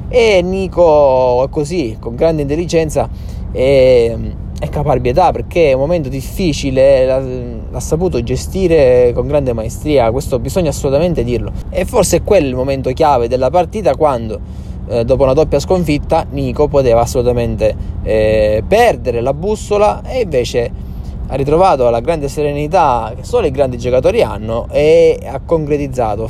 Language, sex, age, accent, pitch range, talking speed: Italian, male, 20-39, native, 115-155 Hz, 140 wpm